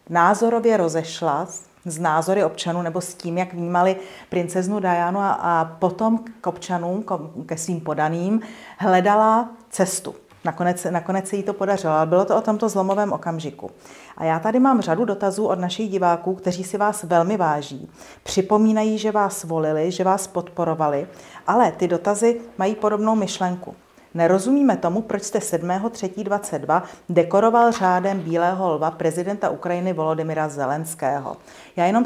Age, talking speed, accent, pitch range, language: 40-59, 140 wpm, native, 175-205 Hz, Czech